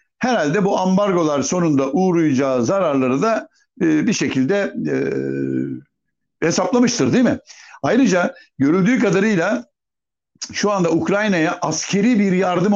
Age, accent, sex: 60-79, native, male